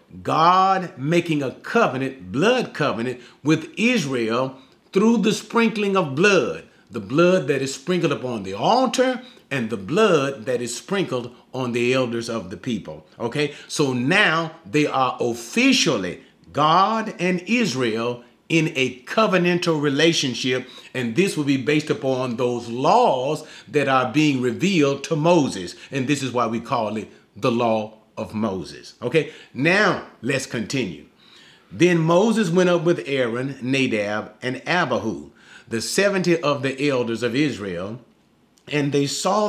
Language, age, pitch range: English, 40-59, 125-175 Hz